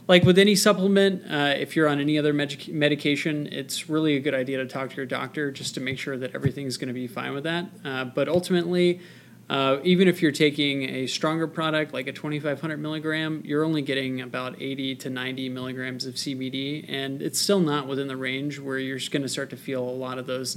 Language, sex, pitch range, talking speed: English, male, 135-170 Hz, 220 wpm